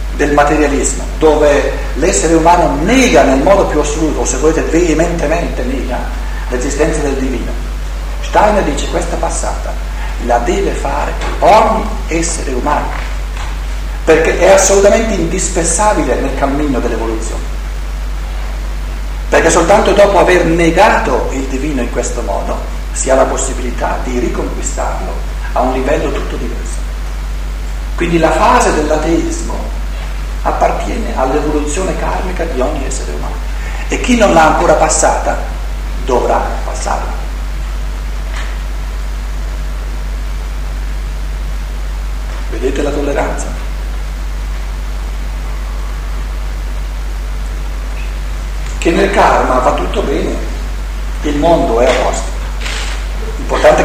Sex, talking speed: male, 100 wpm